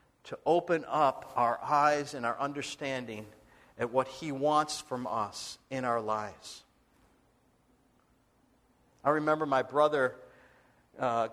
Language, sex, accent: English, male, American